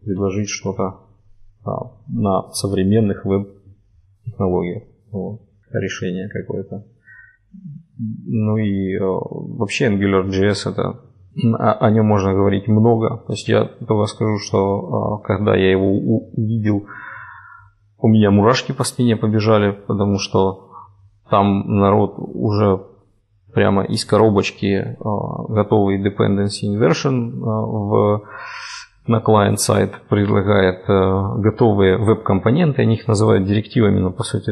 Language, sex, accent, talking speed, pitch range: Ukrainian, male, native, 115 wpm, 100-110 Hz